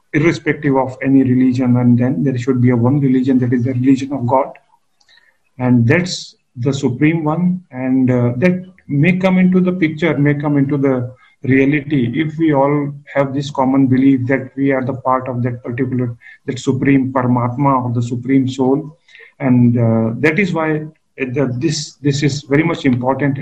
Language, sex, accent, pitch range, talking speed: English, male, Indian, 130-150 Hz, 180 wpm